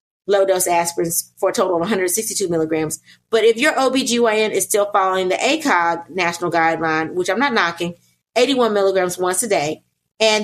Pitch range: 190-245 Hz